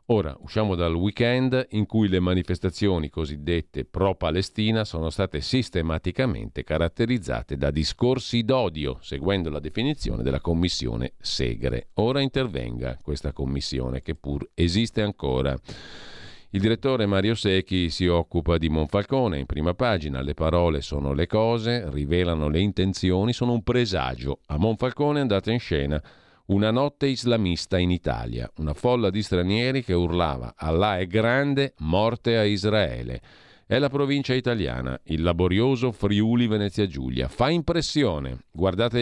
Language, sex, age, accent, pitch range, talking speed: Italian, male, 50-69, native, 80-120 Hz, 135 wpm